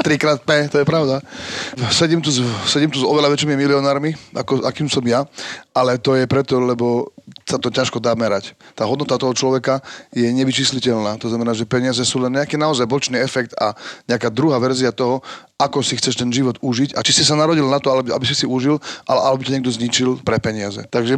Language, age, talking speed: Slovak, 30-49, 205 wpm